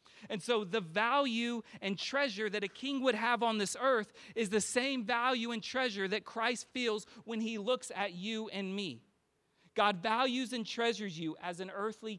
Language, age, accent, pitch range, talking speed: English, 30-49, American, 145-210 Hz, 185 wpm